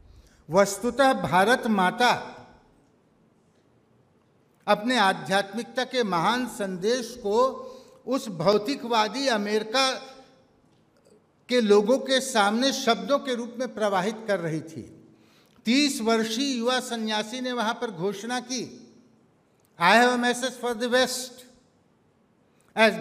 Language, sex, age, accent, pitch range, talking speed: Hindi, male, 60-79, native, 215-250 Hz, 105 wpm